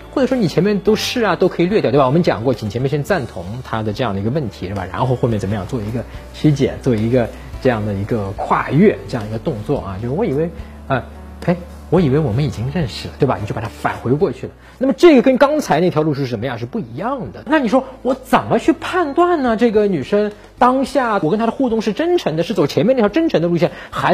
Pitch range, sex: 140-215 Hz, male